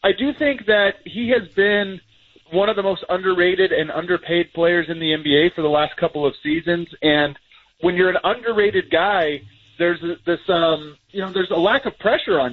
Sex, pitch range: male, 160-195 Hz